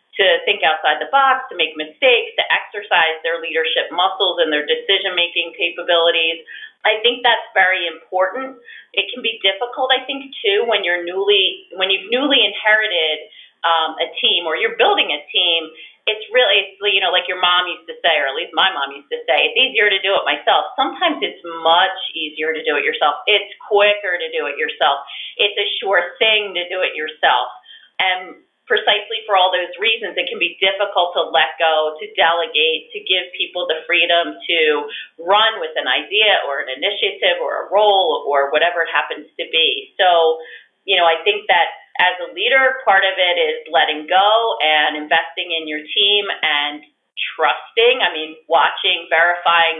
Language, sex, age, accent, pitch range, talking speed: English, female, 30-49, American, 165-260 Hz, 185 wpm